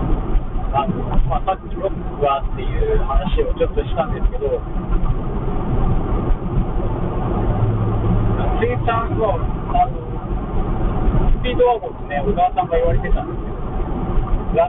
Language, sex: Japanese, male